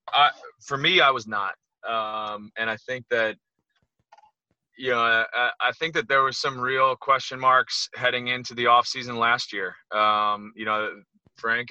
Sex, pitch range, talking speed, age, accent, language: male, 110-130 Hz, 170 wpm, 20-39, American, English